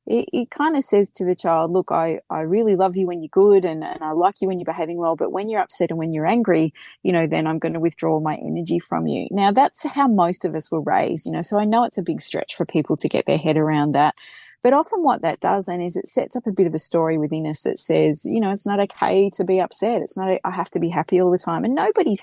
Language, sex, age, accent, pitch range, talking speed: English, female, 30-49, Australian, 170-220 Hz, 295 wpm